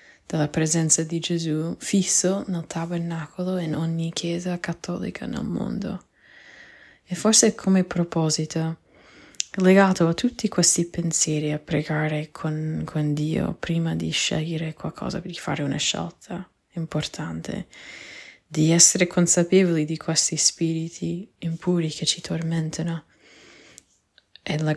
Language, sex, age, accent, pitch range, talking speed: Italian, female, 20-39, native, 155-170 Hz, 115 wpm